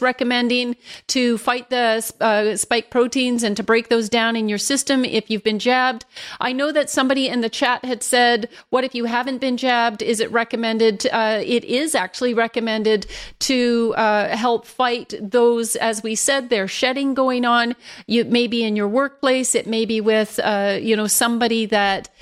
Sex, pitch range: female, 220-250 Hz